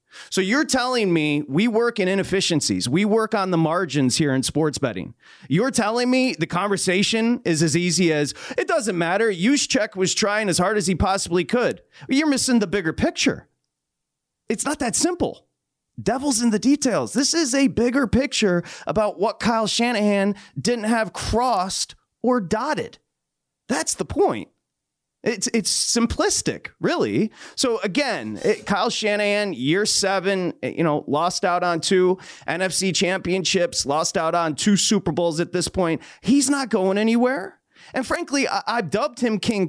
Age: 30-49